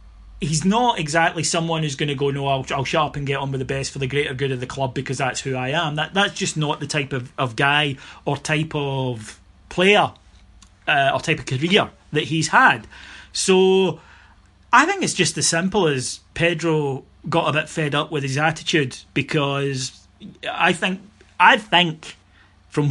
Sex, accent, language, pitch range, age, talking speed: male, British, English, 135-165 Hz, 30-49, 195 wpm